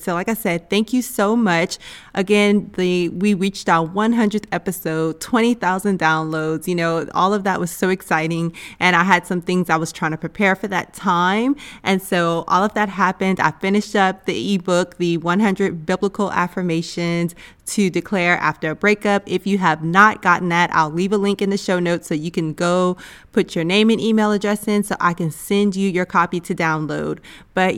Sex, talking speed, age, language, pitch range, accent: female, 200 wpm, 20-39, English, 175-215 Hz, American